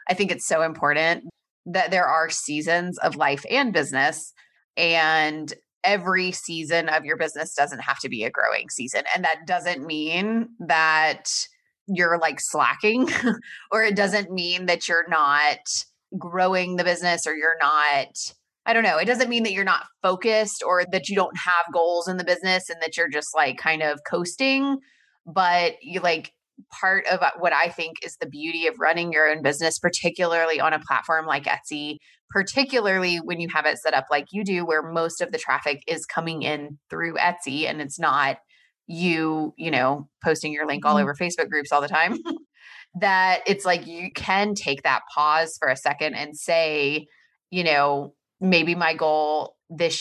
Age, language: 20-39, English